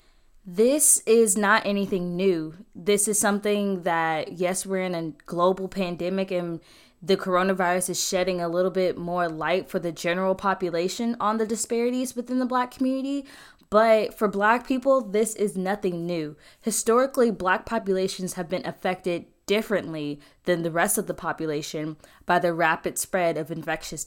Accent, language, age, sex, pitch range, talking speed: American, English, 10-29, female, 175-220 Hz, 155 wpm